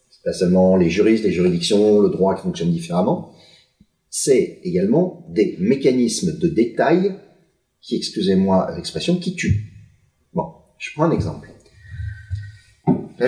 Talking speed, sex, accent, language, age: 125 wpm, male, French, French, 40-59